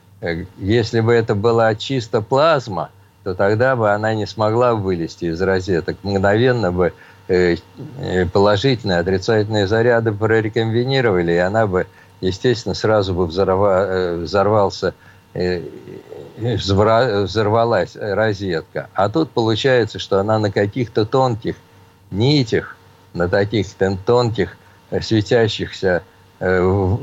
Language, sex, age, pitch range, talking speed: Russian, male, 50-69, 95-120 Hz, 95 wpm